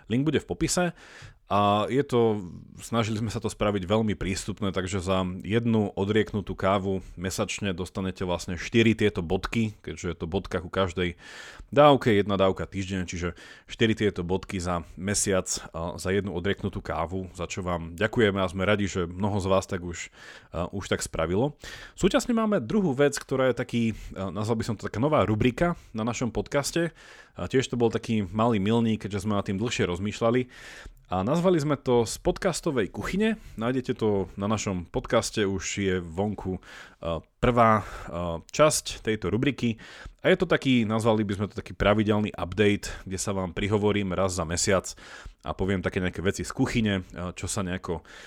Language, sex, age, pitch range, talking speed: Slovak, male, 30-49, 95-115 Hz, 170 wpm